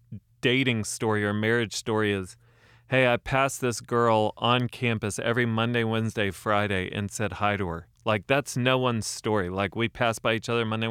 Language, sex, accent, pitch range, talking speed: English, male, American, 100-120 Hz, 185 wpm